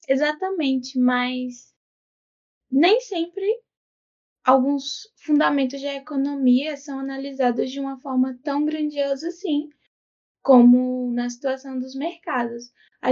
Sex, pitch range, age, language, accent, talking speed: female, 255-320 Hz, 10-29, Portuguese, Brazilian, 100 wpm